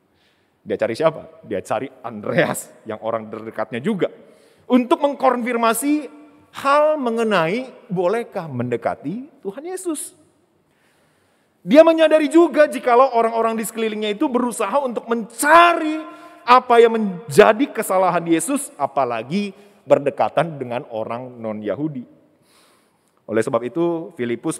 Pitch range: 150-245 Hz